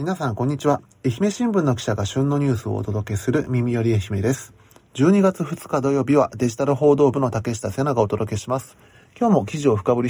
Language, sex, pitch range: Japanese, male, 105-140 Hz